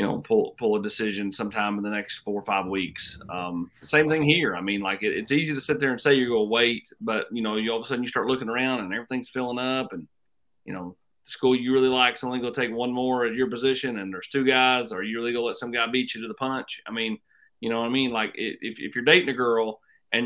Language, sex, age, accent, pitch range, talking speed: English, male, 30-49, American, 105-135 Hz, 295 wpm